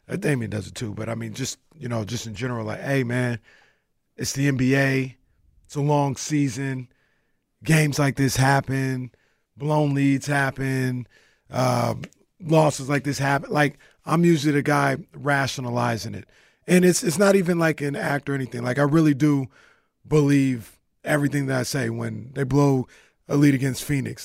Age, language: 30-49, English